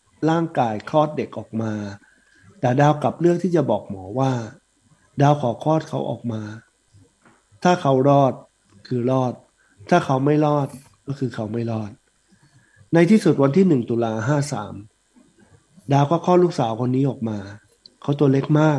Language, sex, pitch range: Thai, male, 115-150 Hz